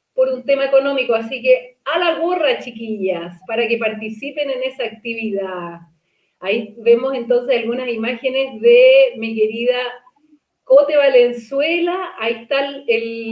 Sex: female